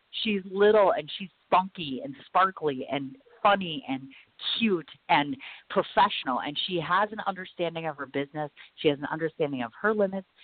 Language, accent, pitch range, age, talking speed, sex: English, American, 130-175 Hz, 40-59, 160 wpm, female